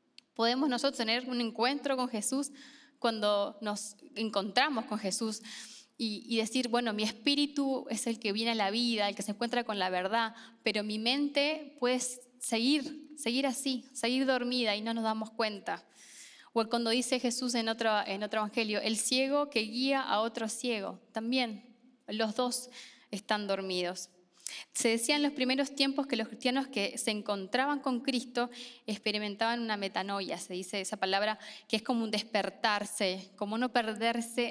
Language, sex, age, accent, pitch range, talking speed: Spanish, female, 10-29, Argentinian, 215-250 Hz, 165 wpm